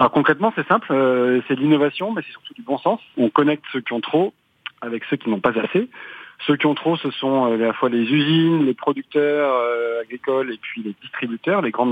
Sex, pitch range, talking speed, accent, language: male, 120-155 Hz, 235 wpm, French, French